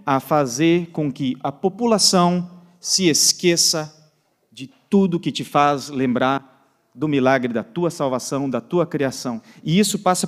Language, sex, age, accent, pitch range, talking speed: Portuguese, male, 40-59, Brazilian, 135-190 Hz, 145 wpm